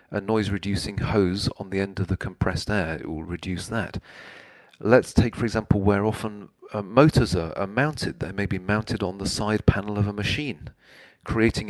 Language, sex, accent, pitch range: English, male, British, 95-115 Hz